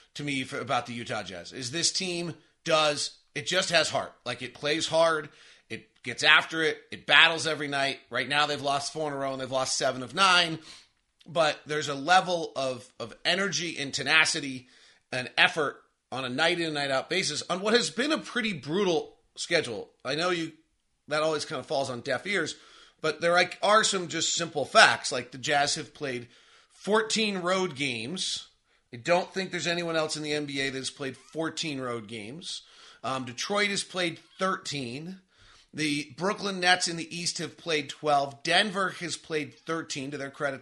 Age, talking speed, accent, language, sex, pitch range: 30-49, 190 wpm, American, English, male, 125-170 Hz